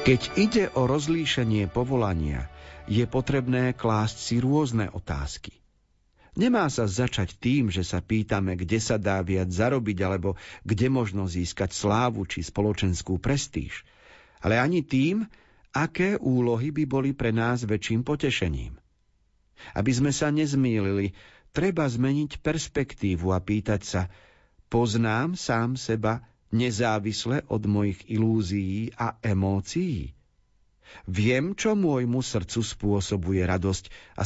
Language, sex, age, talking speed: Slovak, male, 50-69, 120 wpm